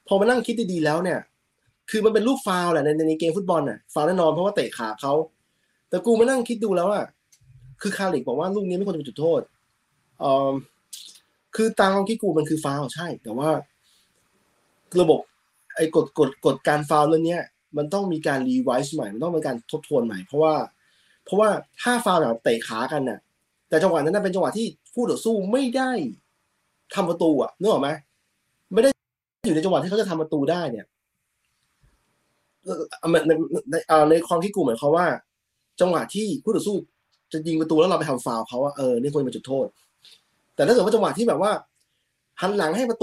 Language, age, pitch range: Thai, 20-39, 150-205 Hz